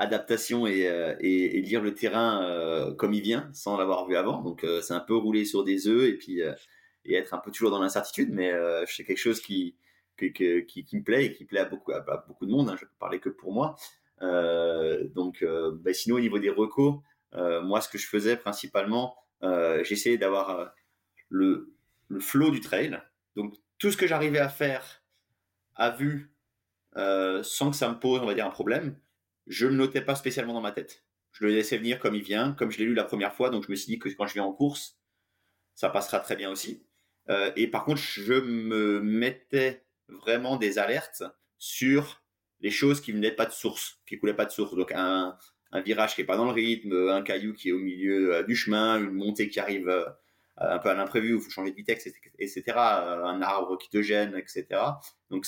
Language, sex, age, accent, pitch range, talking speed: French, male, 30-49, French, 95-125 Hz, 230 wpm